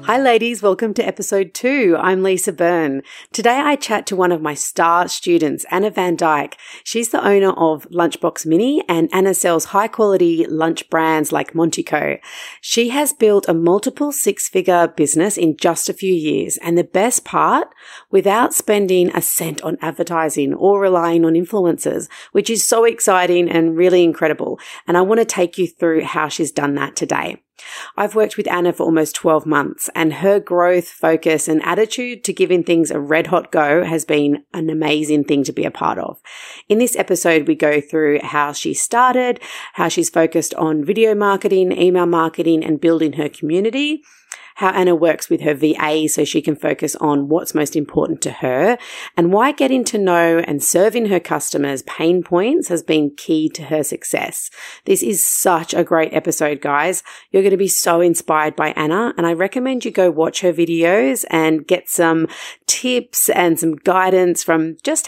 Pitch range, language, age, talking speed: 160-200 Hz, English, 40-59, 185 wpm